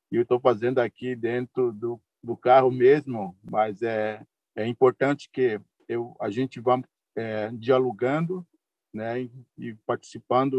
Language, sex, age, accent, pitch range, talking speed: Portuguese, male, 50-69, Brazilian, 115-135 Hz, 135 wpm